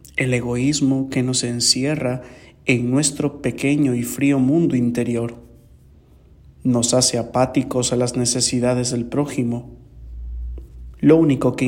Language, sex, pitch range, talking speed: English, male, 120-140 Hz, 120 wpm